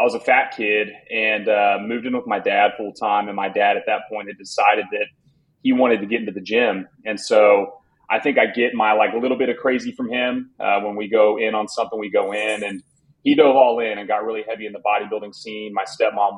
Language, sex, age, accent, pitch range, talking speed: English, male, 30-49, American, 105-125 Hz, 255 wpm